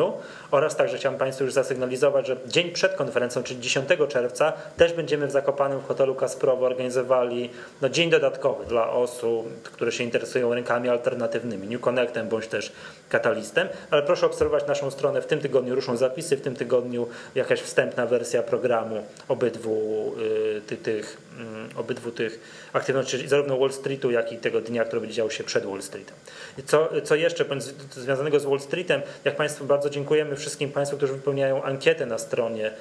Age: 20-39